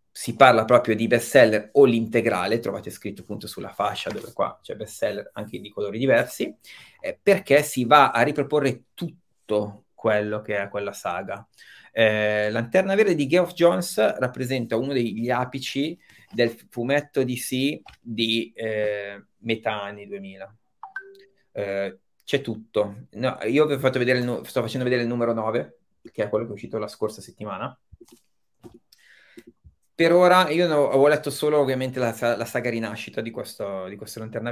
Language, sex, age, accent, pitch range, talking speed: Italian, male, 30-49, native, 105-130 Hz, 150 wpm